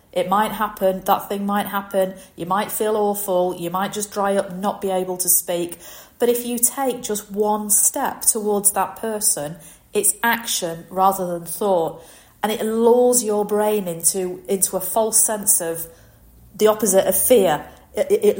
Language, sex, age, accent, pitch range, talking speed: English, female, 40-59, British, 180-220 Hz, 175 wpm